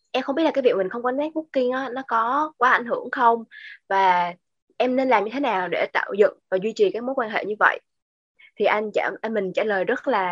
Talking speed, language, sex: 260 wpm, Vietnamese, female